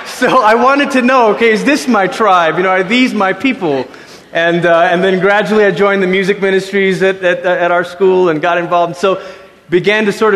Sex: male